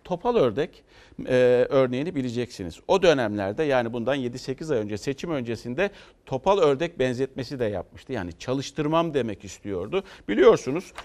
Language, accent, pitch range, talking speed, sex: Turkish, native, 115-165 Hz, 130 wpm, male